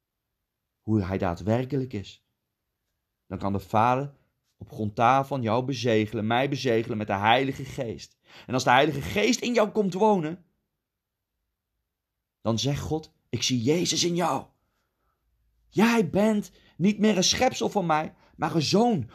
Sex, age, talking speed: male, 40-59, 145 wpm